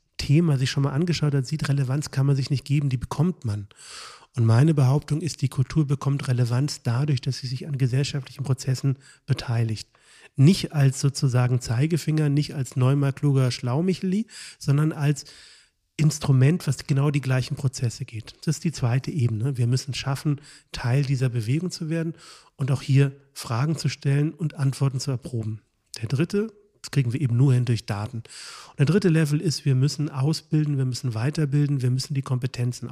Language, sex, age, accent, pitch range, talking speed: German, male, 40-59, German, 130-155 Hz, 175 wpm